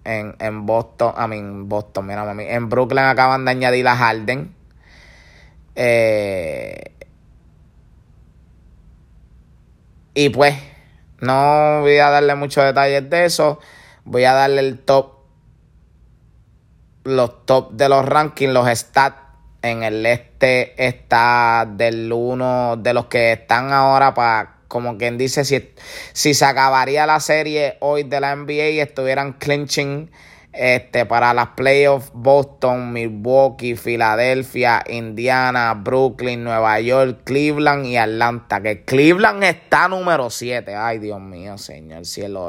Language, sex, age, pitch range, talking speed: English, male, 20-39, 115-135 Hz, 130 wpm